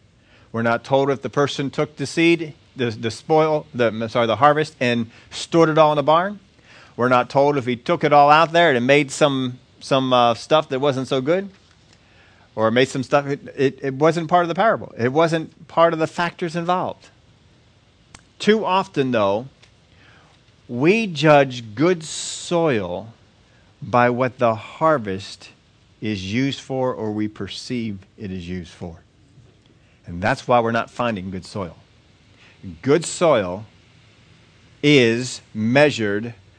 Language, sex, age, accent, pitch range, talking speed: English, male, 40-59, American, 105-145 Hz, 155 wpm